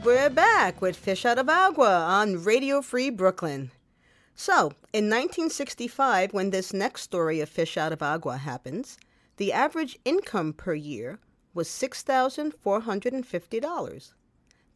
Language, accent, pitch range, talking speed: English, American, 175-250 Hz, 125 wpm